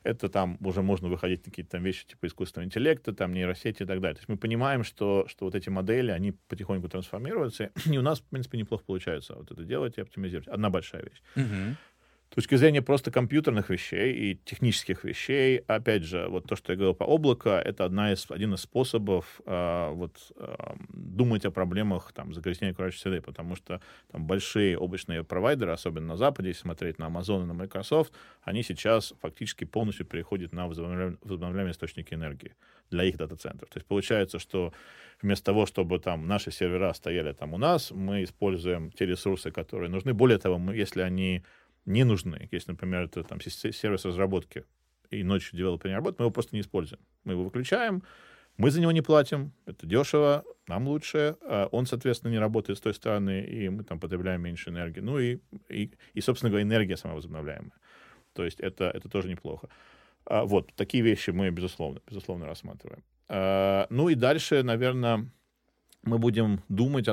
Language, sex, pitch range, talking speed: Russian, male, 90-115 Hz, 180 wpm